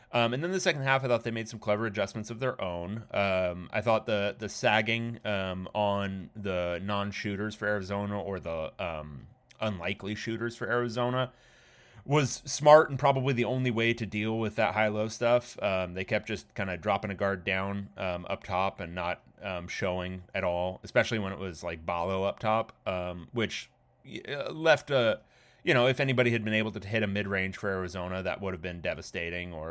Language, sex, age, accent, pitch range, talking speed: English, male, 30-49, American, 90-115 Hz, 200 wpm